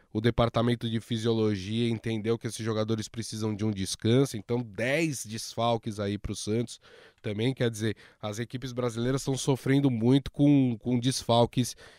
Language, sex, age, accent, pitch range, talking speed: Portuguese, male, 20-39, Brazilian, 115-140 Hz, 155 wpm